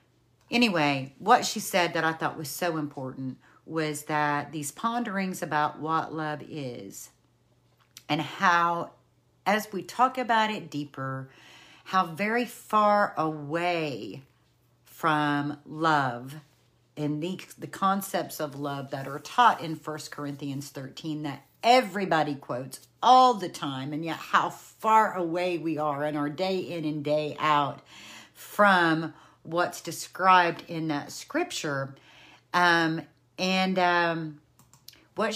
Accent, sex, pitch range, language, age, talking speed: American, female, 150-180 Hz, English, 50-69, 125 wpm